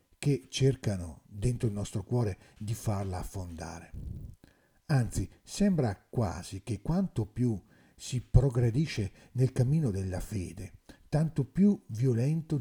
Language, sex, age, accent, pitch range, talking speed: Italian, male, 50-69, native, 95-125 Hz, 115 wpm